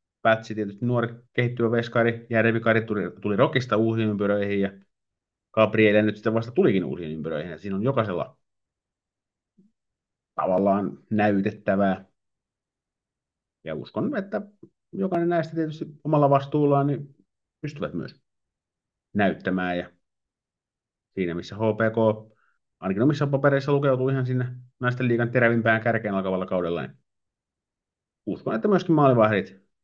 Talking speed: 115 wpm